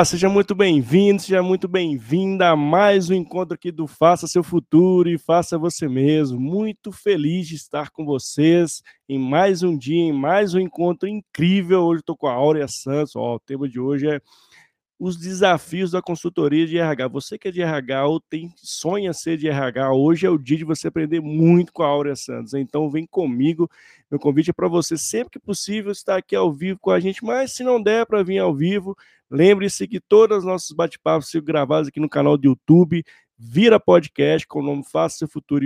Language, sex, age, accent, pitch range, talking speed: Portuguese, male, 20-39, Brazilian, 150-190 Hz, 210 wpm